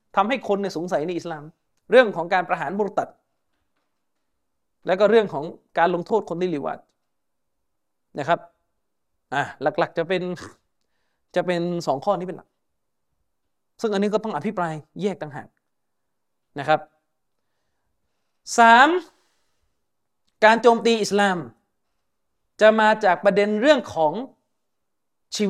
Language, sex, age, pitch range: Thai, male, 20-39, 175-220 Hz